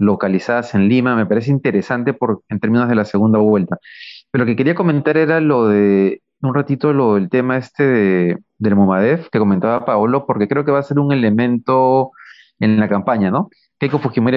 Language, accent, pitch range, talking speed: Spanish, Mexican, 110-145 Hz, 195 wpm